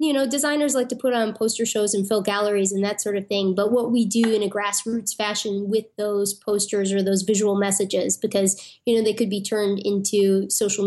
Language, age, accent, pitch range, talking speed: English, 20-39, American, 200-225 Hz, 225 wpm